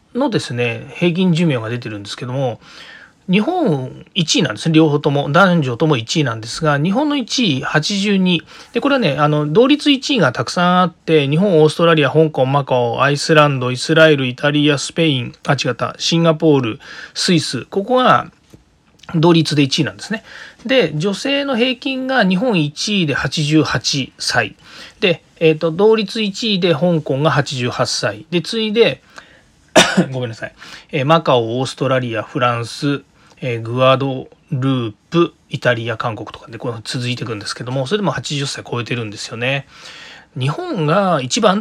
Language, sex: Japanese, male